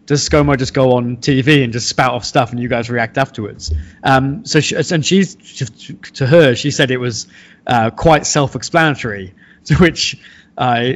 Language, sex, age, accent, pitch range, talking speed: English, male, 20-39, British, 125-155 Hz, 175 wpm